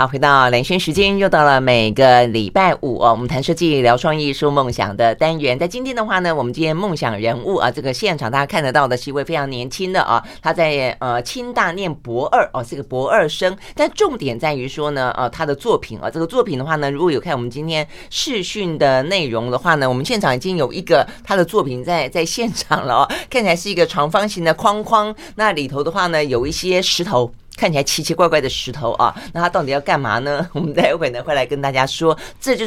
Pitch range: 130-175 Hz